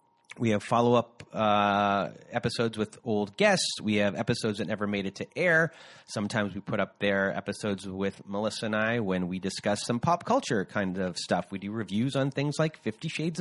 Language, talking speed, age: English, 190 wpm, 30-49